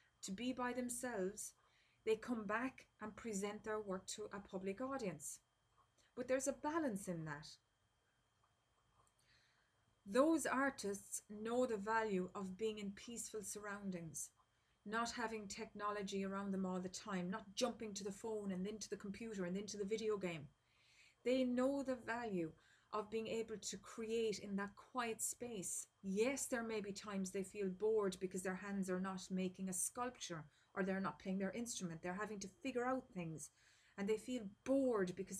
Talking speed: 170 wpm